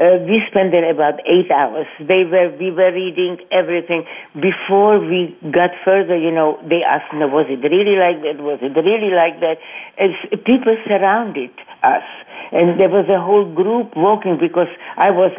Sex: female